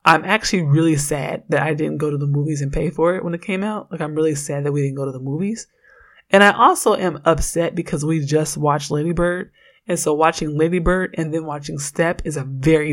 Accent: American